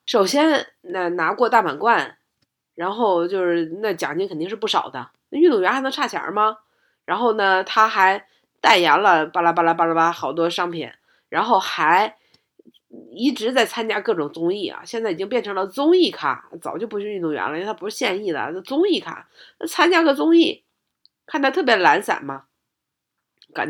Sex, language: female, Chinese